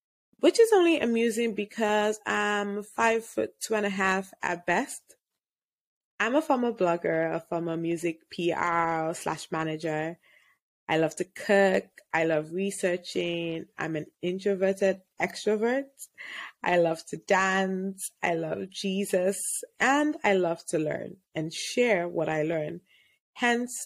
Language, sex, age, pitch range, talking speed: English, female, 20-39, 165-230 Hz, 135 wpm